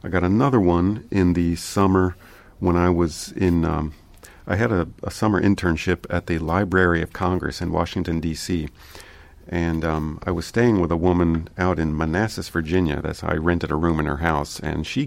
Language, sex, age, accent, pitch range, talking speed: English, male, 40-59, American, 80-90 Hz, 190 wpm